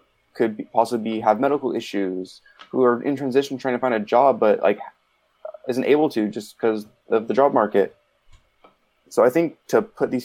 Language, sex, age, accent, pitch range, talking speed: English, male, 20-39, American, 105-115 Hz, 185 wpm